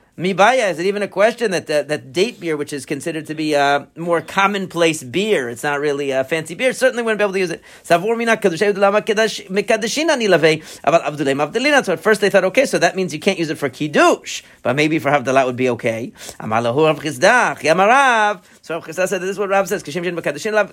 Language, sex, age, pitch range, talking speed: English, male, 40-59, 150-205 Hz, 175 wpm